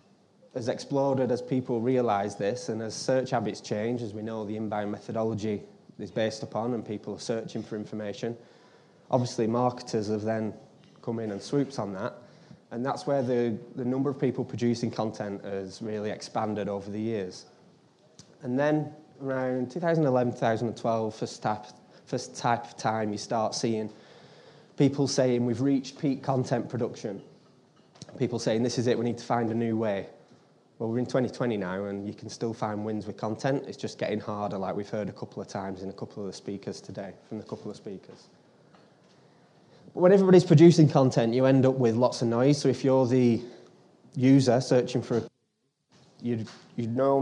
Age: 20-39